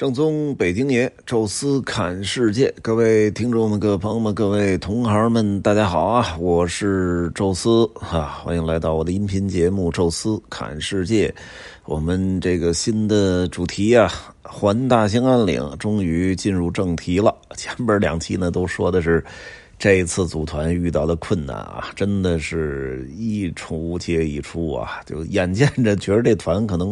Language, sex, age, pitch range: Chinese, male, 30-49, 85-105 Hz